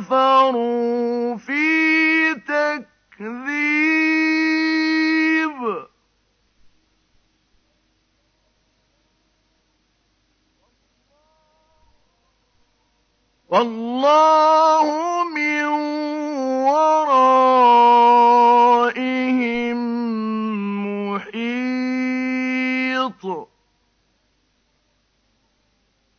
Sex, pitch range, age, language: male, 240-310 Hz, 50-69, Arabic